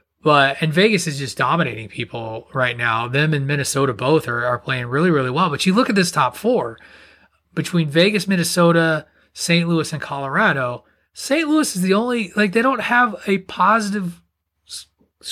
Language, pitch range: English, 155-215 Hz